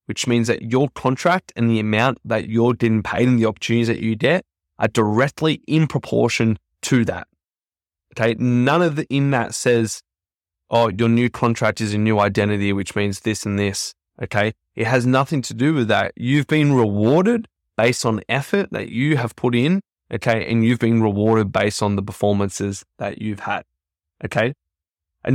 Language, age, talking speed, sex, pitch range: English, 20-39, 180 wpm, male, 105-125 Hz